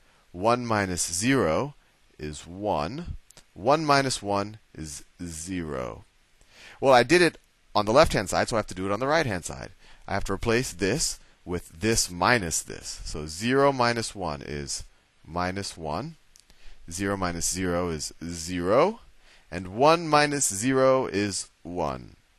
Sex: male